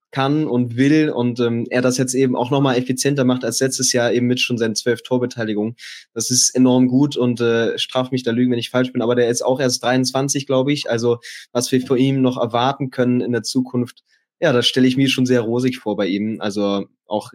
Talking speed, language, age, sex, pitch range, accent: 235 wpm, German, 20-39, male, 120-135 Hz, German